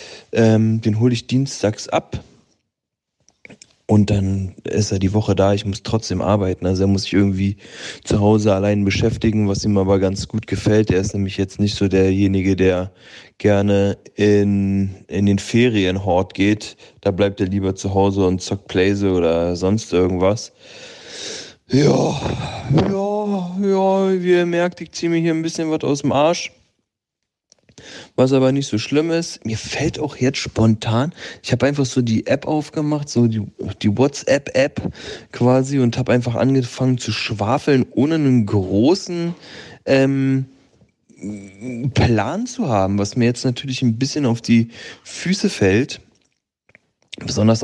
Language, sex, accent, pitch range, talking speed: German, male, German, 100-140 Hz, 150 wpm